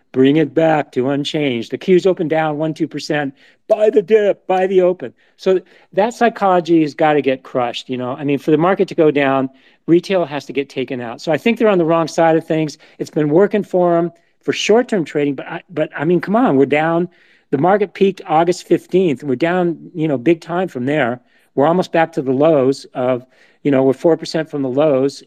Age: 40-59